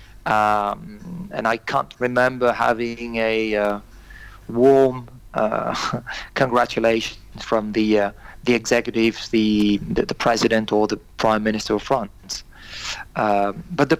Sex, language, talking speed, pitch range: male, English, 125 wpm, 110-130 Hz